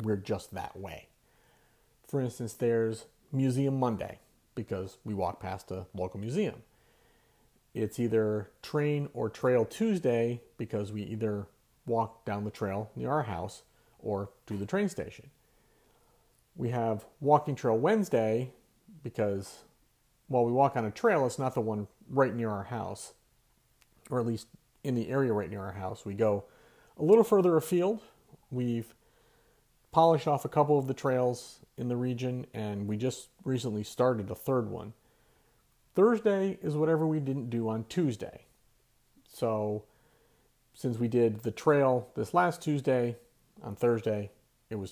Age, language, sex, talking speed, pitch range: 40-59, English, male, 150 wpm, 110-140 Hz